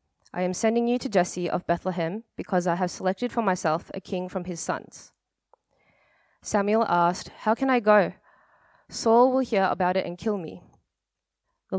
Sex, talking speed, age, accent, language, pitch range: female, 175 wpm, 20-39, Australian, English, 180-220 Hz